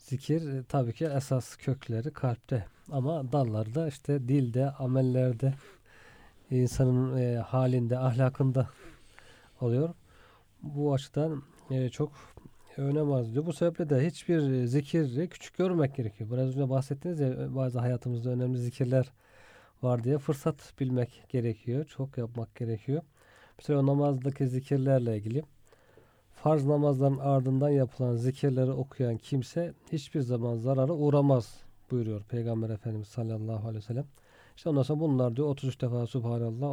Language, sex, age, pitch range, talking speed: Turkish, male, 40-59, 120-145 Hz, 125 wpm